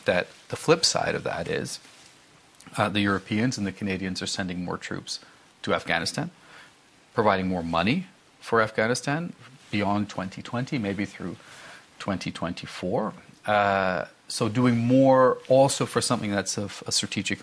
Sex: male